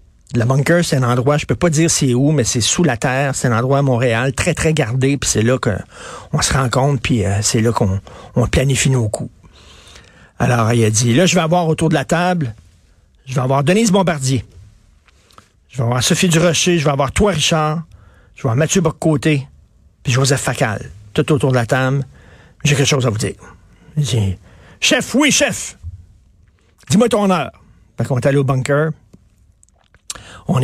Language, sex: French, male